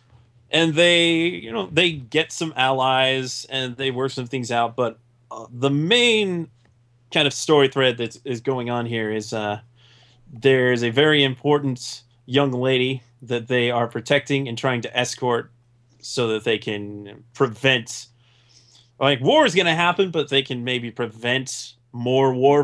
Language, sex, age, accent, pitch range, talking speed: English, male, 30-49, American, 120-135 Hz, 160 wpm